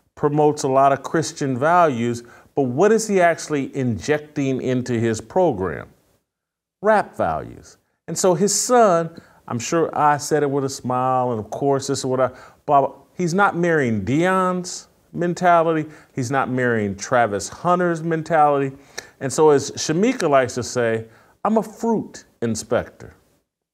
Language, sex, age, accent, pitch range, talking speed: English, male, 40-59, American, 125-170 Hz, 150 wpm